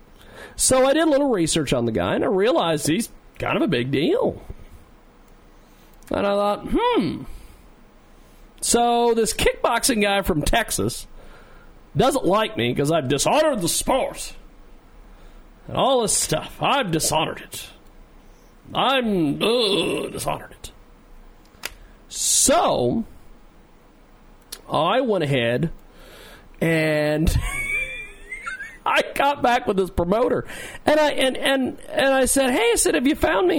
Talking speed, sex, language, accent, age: 125 wpm, male, English, American, 40-59